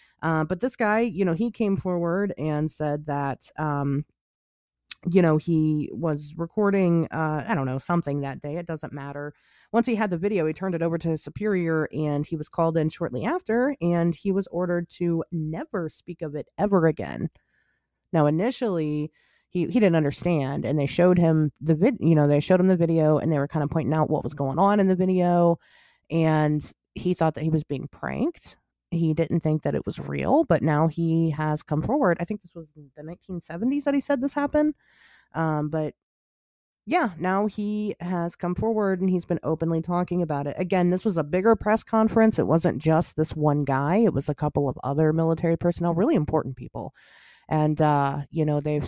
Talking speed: 205 wpm